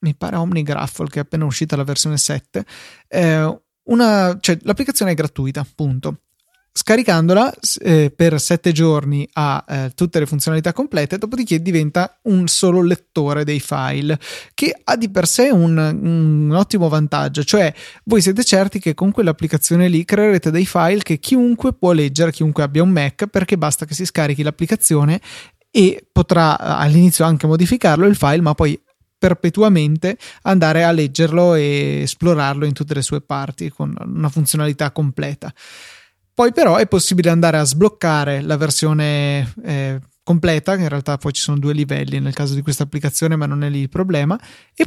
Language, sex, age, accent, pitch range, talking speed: Italian, male, 20-39, native, 150-185 Hz, 170 wpm